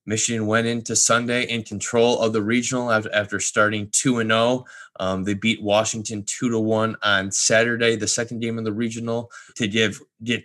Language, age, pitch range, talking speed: English, 20-39, 100-115 Hz, 180 wpm